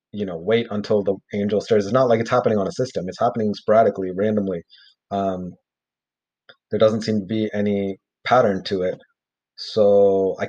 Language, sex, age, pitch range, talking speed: English, male, 30-49, 90-115 Hz, 175 wpm